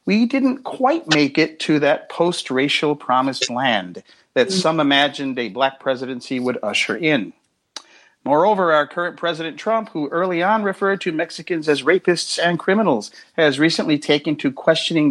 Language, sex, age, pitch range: English, male, 40-59, 135-180 Hz